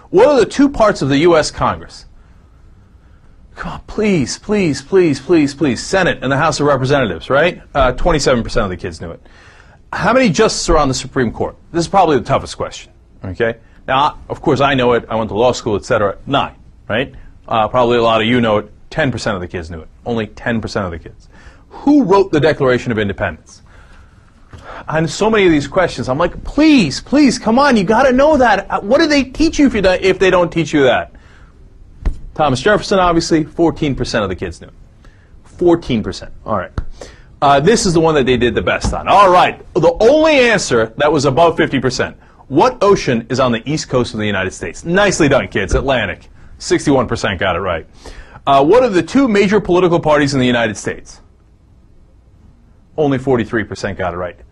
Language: English